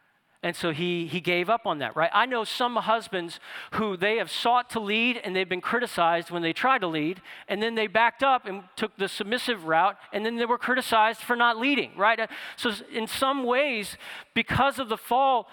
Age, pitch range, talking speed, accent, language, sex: 40-59, 185-245 Hz, 215 wpm, American, English, male